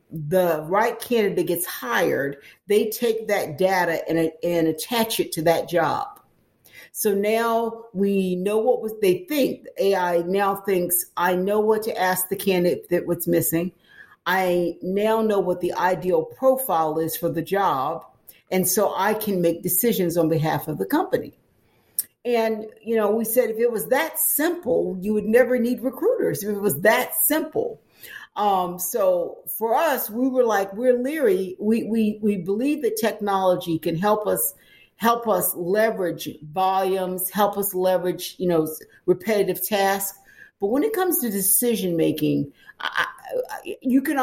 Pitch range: 180-235 Hz